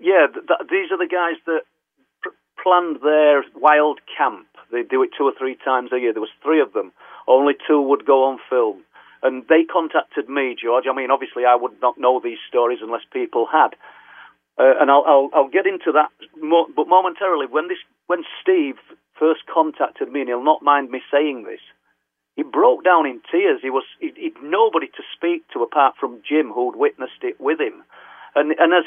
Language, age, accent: English, 50-69, British